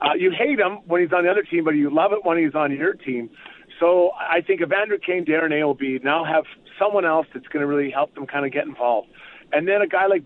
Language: English